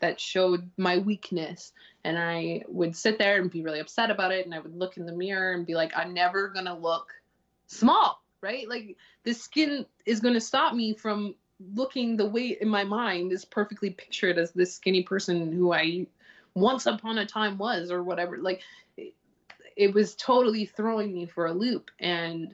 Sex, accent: female, American